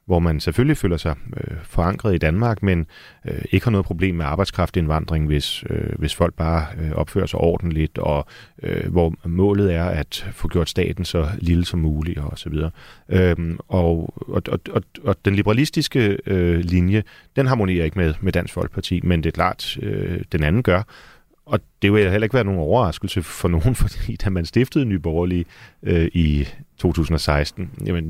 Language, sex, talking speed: Danish, male, 185 wpm